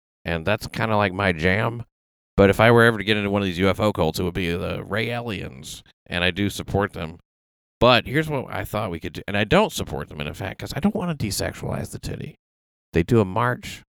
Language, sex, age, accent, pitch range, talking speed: English, male, 40-59, American, 85-115 Hz, 250 wpm